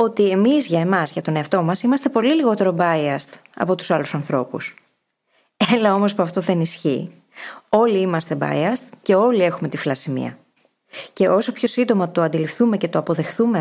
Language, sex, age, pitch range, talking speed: Greek, female, 20-39, 170-225 Hz, 170 wpm